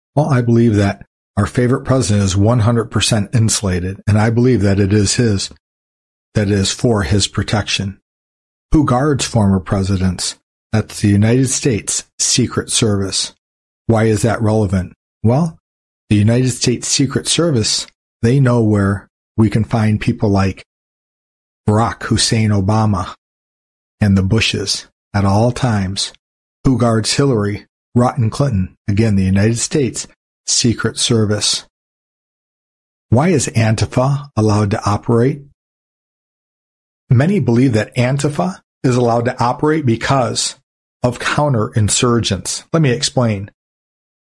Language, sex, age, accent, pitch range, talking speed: English, male, 40-59, American, 100-125 Hz, 125 wpm